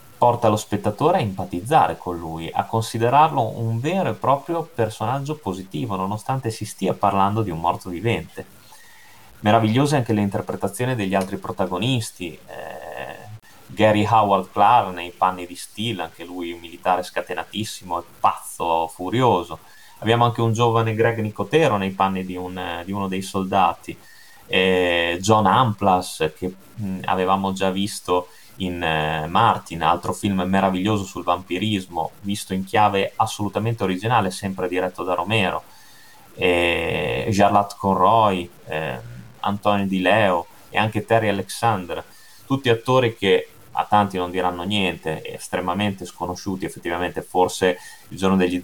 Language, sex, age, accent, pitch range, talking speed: Italian, male, 20-39, native, 90-110 Hz, 135 wpm